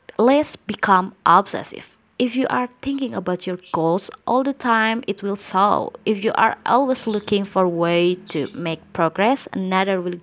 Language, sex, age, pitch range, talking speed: English, female, 20-39, 165-210 Hz, 170 wpm